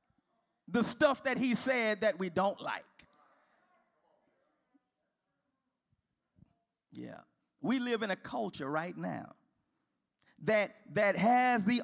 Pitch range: 195-250 Hz